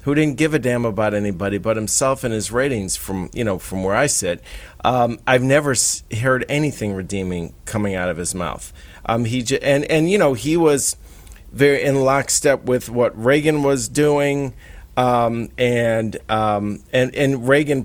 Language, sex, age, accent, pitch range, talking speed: English, male, 40-59, American, 105-140 Hz, 180 wpm